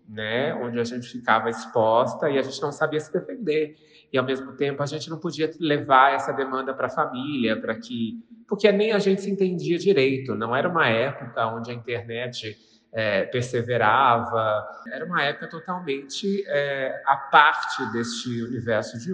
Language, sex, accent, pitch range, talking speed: Portuguese, male, Brazilian, 120-165 Hz, 170 wpm